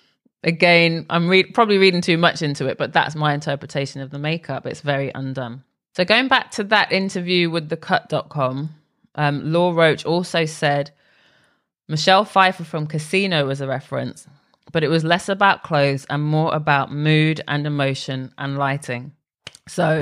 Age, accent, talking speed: 20-39, British, 160 wpm